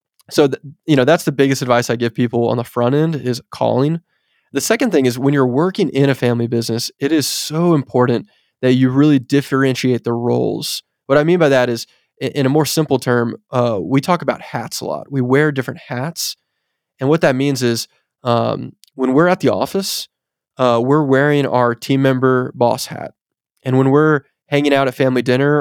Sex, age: male, 20-39